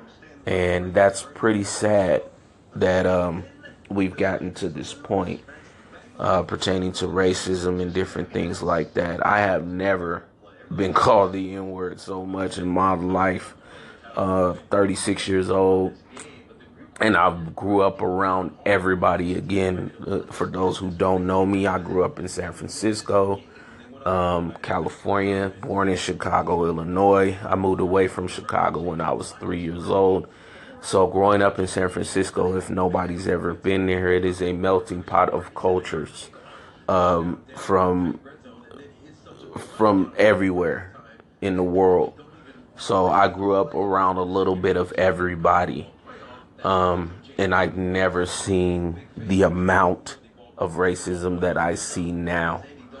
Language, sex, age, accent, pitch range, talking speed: English, male, 30-49, American, 90-95 Hz, 135 wpm